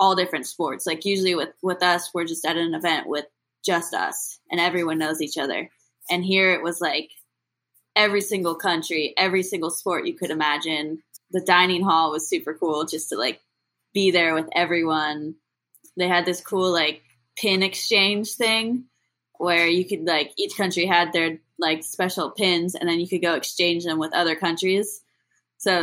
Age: 10-29